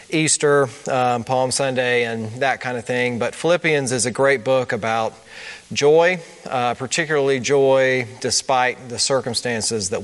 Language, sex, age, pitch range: English, male, 40-59, 120-140 Hz